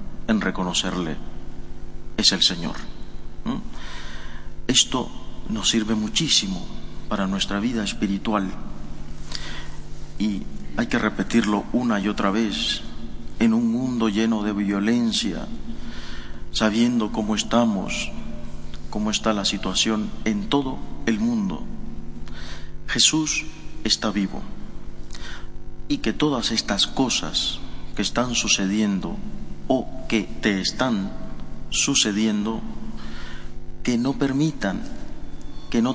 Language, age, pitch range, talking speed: Spanish, 40-59, 95-120 Hz, 100 wpm